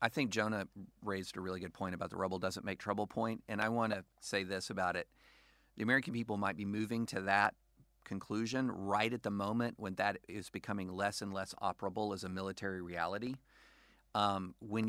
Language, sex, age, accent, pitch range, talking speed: English, male, 40-59, American, 95-115 Hz, 200 wpm